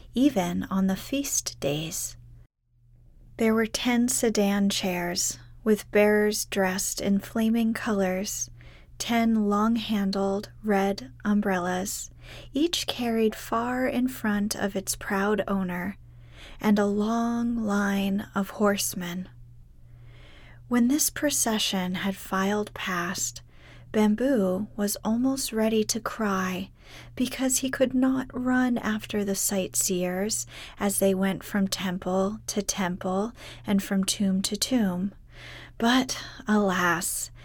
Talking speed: 110 wpm